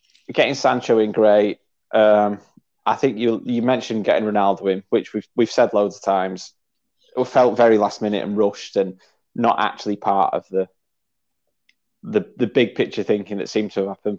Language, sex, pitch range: English, male, 100-115 Hz